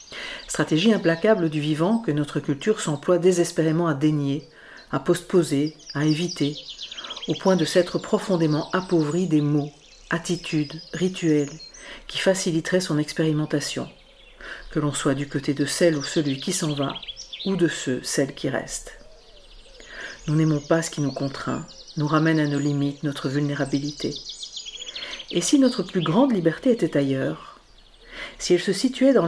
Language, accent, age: French, French, 50-69